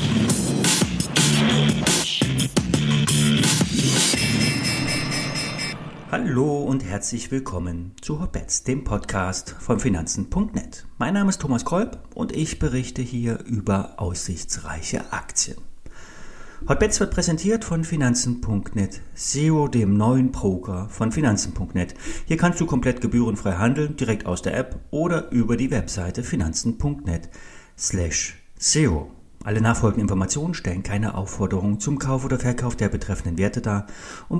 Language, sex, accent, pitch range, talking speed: German, male, German, 95-140 Hz, 110 wpm